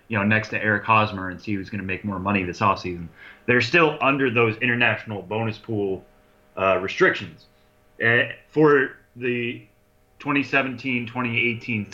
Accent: American